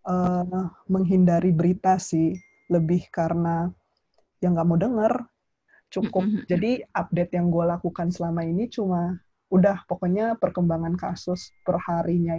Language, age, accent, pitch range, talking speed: Indonesian, 20-39, native, 170-185 Hz, 115 wpm